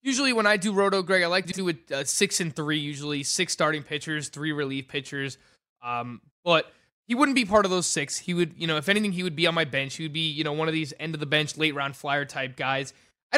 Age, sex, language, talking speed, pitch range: 20-39, male, English, 250 wpm, 150-190 Hz